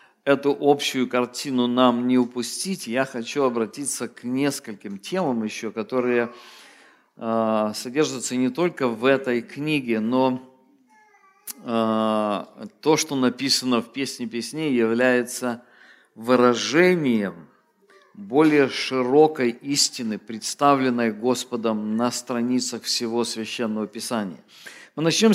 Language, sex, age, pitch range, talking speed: English, male, 50-69, 120-140 Hz, 100 wpm